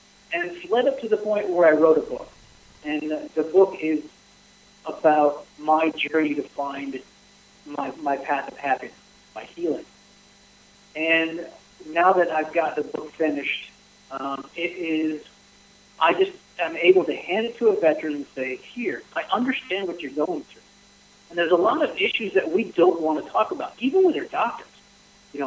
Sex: male